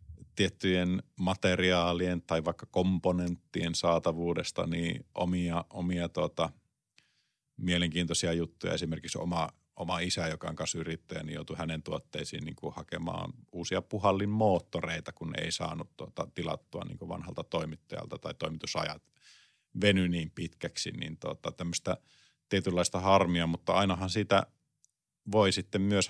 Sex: male